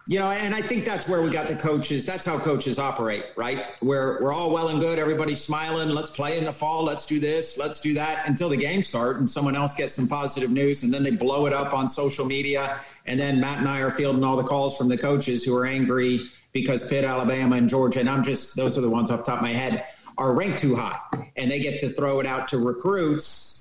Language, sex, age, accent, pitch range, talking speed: English, male, 50-69, American, 125-160 Hz, 260 wpm